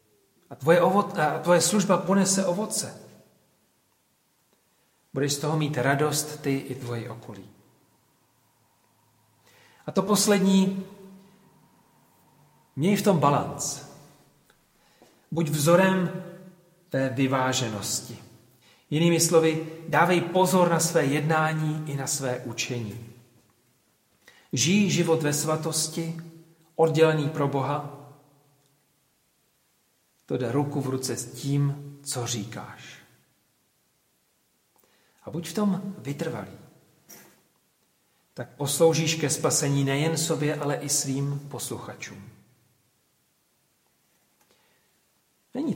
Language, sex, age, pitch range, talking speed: Czech, male, 40-59, 130-165 Hz, 90 wpm